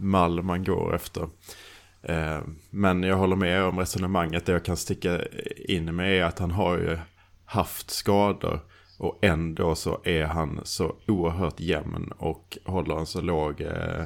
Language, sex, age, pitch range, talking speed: Swedish, male, 20-39, 80-95 Hz, 155 wpm